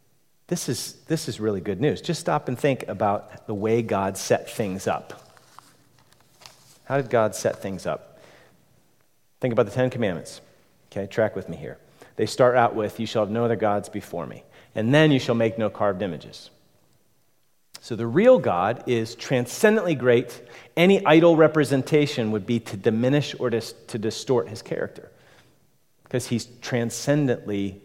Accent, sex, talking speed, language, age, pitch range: American, male, 165 wpm, English, 40-59, 110-140 Hz